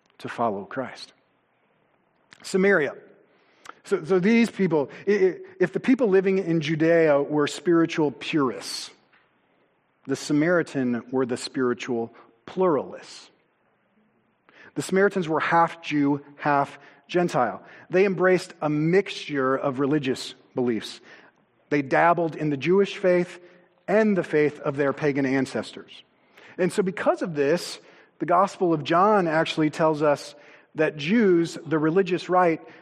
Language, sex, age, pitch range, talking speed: English, male, 40-59, 145-185 Hz, 125 wpm